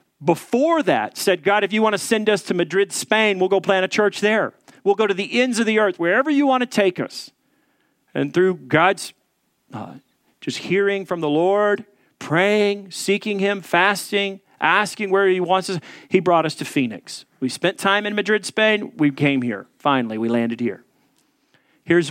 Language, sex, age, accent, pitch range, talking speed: English, male, 40-59, American, 140-205 Hz, 190 wpm